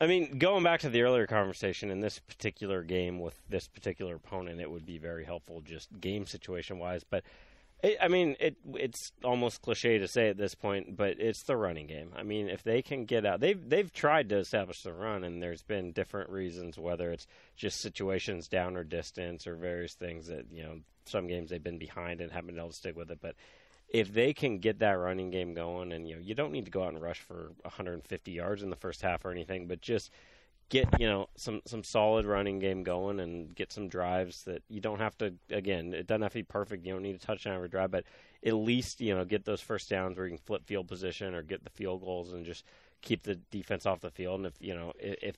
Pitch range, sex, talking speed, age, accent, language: 85-105 Hz, male, 245 wpm, 30-49, American, English